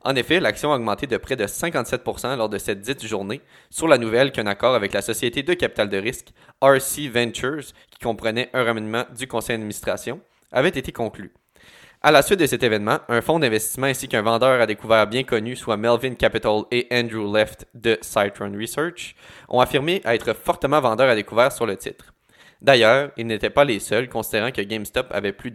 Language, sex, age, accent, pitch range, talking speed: French, male, 20-39, Canadian, 110-135 Hz, 195 wpm